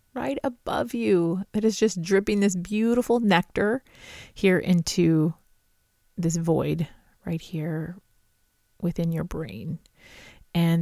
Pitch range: 160-195 Hz